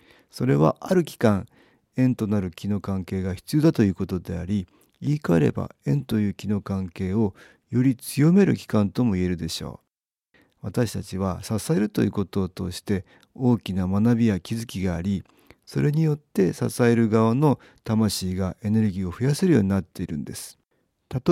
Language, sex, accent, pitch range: Japanese, male, native, 95-125 Hz